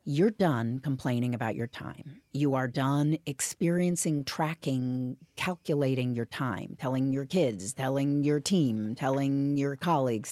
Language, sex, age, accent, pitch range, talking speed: English, female, 50-69, American, 130-170 Hz, 135 wpm